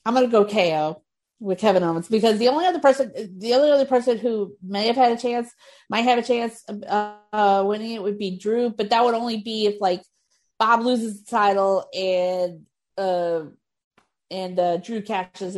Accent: American